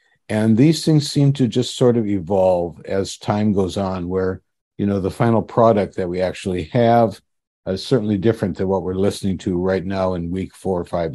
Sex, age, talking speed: male, 60-79, 200 wpm